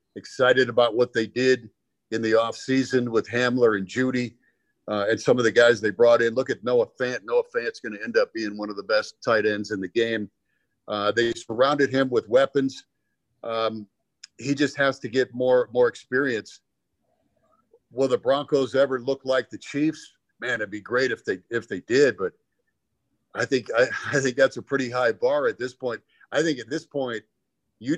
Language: English